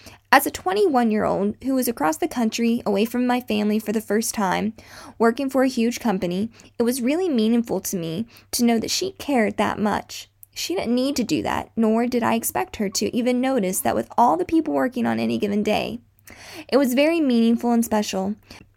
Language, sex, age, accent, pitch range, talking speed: English, female, 10-29, American, 210-270 Hz, 205 wpm